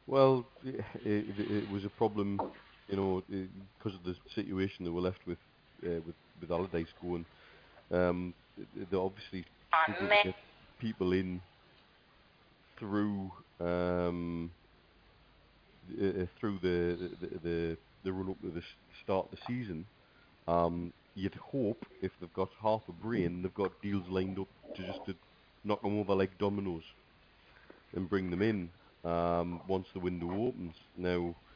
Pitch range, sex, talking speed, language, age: 85-100 Hz, male, 145 wpm, English, 40-59